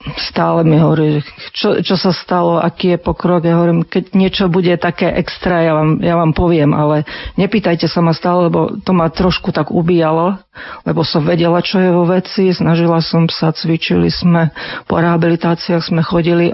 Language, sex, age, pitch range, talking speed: Slovak, female, 40-59, 160-185 Hz, 180 wpm